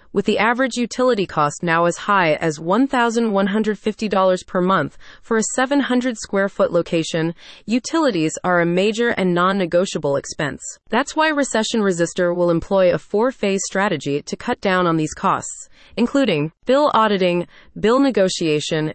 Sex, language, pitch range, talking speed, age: female, English, 170-235 Hz, 135 wpm, 30-49